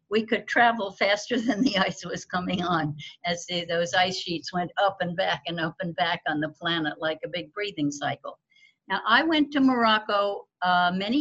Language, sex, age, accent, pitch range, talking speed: English, female, 60-79, American, 170-220 Hz, 200 wpm